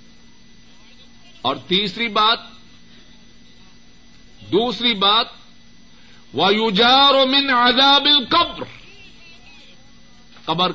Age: 60-79